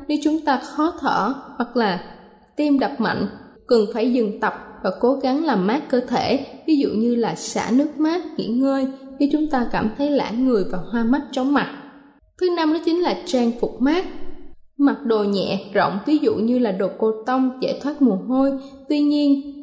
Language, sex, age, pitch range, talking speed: Vietnamese, female, 10-29, 220-285 Hz, 205 wpm